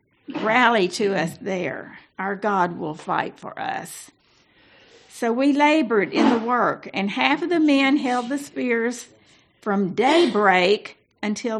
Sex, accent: female, American